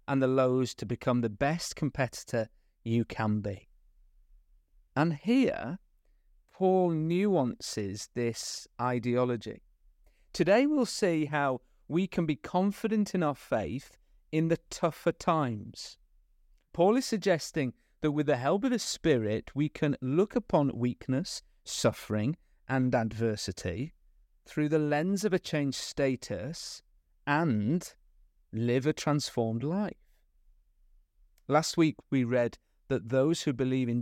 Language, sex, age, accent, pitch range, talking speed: English, male, 30-49, British, 110-150 Hz, 125 wpm